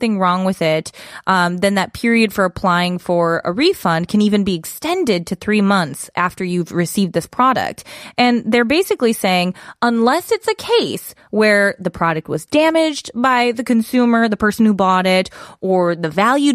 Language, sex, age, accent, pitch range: Korean, female, 20-39, American, 175-240 Hz